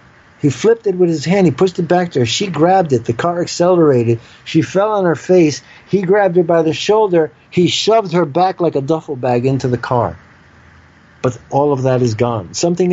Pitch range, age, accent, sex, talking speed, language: 125-160 Hz, 50-69, American, male, 220 wpm, English